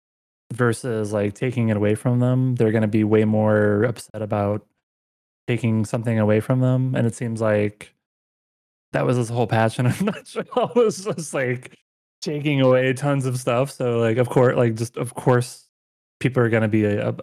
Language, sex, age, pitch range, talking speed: English, male, 20-39, 105-125 Hz, 190 wpm